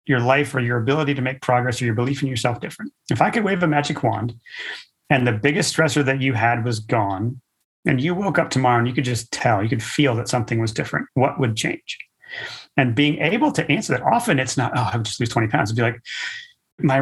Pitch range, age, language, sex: 120-145 Hz, 30-49, English, male